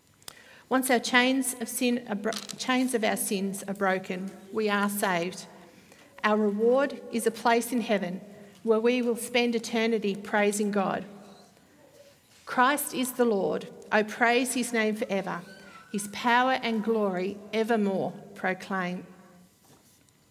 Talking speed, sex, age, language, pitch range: 135 wpm, female, 50-69, English, 195-235 Hz